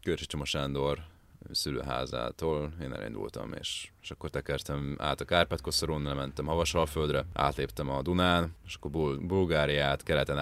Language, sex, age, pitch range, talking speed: Hungarian, male, 30-49, 70-85 Hz, 130 wpm